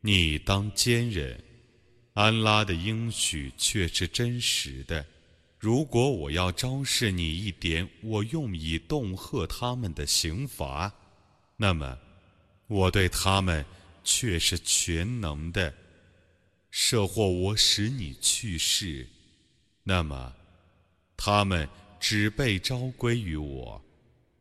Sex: male